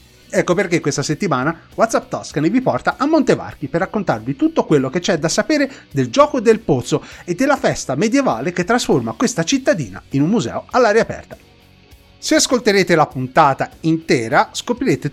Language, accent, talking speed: Italian, native, 165 wpm